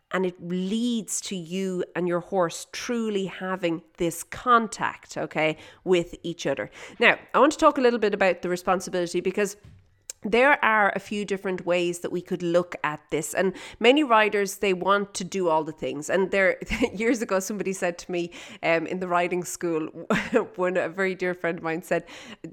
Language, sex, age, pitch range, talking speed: English, female, 30-49, 180-255 Hz, 190 wpm